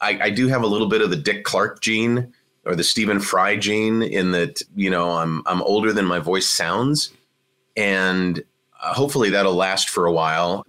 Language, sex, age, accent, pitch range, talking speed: English, male, 30-49, American, 90-125 Hz, 195 wpm